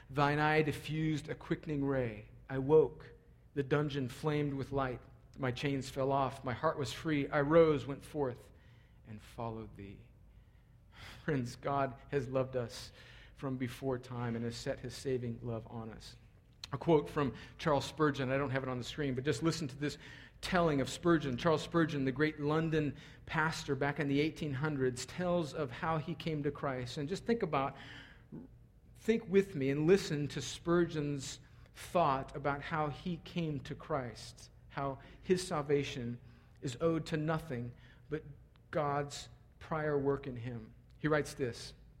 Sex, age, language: male, 40-59, English